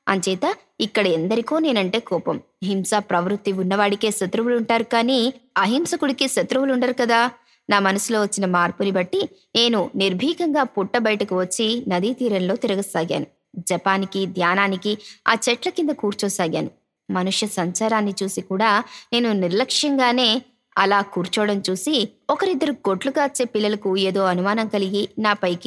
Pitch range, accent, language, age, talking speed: 190-245 Hz, native, Telugu, 20-39, 115 wpm